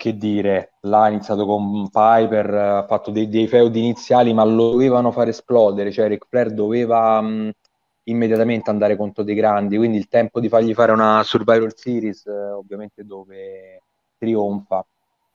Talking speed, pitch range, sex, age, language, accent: 155 wpm, 105-120 Hz, male, 20-39, Italian, native